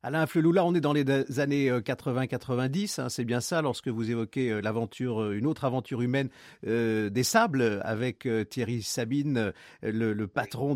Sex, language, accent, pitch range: male, French, French, 120-165 Hz